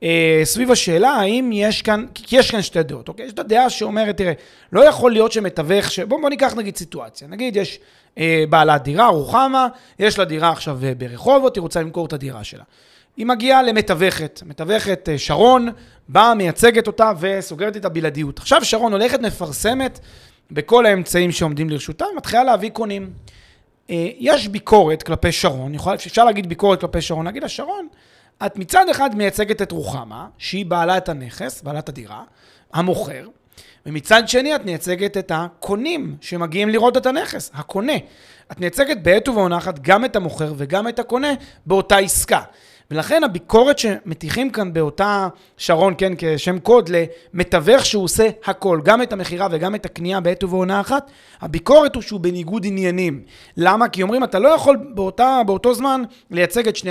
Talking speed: 155 wpm